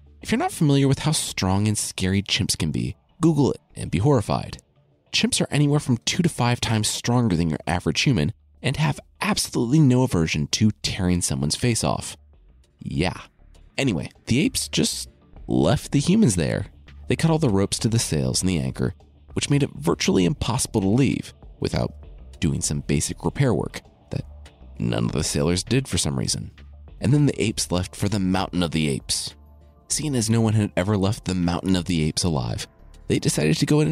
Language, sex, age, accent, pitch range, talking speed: English, male, 30-49, American, 75-125 Hz, 195 wpm